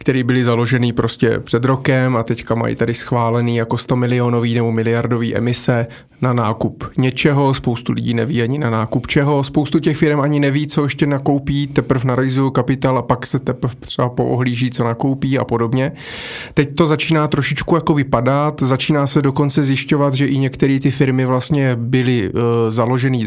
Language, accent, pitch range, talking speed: Czech, native, 120-140 Hz, 170 wpm